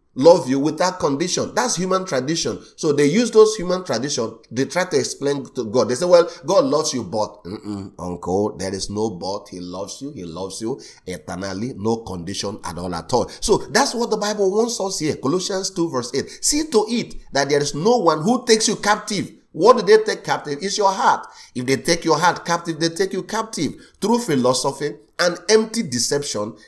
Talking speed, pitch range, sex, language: 205 wpm, 140-205 Hz, male, English